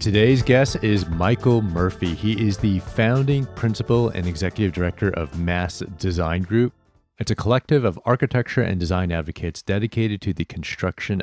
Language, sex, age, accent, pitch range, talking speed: English, male, 40-59, American, 85-110 Hz, 155 wpm